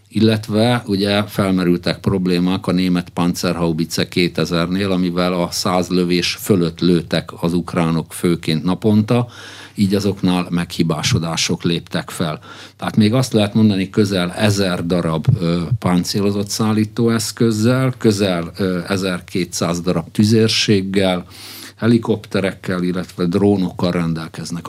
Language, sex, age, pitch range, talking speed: Hungarian, male, 50-69, 90-110 Hz, 100 wpm